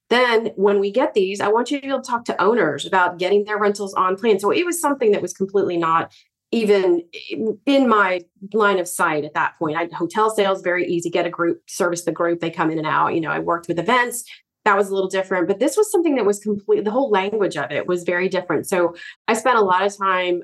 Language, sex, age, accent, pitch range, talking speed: English, female, 30-49, American, 170-210 Hz, 255 wpm